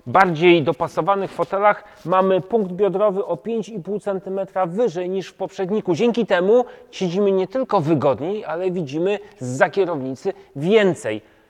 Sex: male